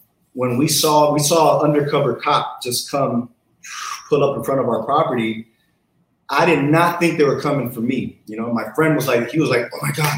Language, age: English, 30-49